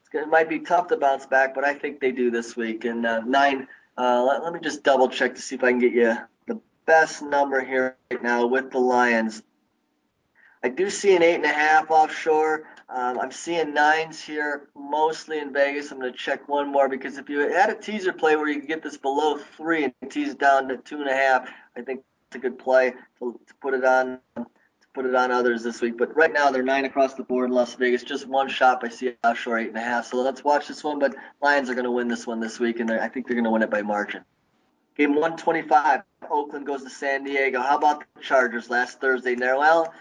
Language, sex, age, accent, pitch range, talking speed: English, male, 20-39, American, 130-165 Hz, 235 wpm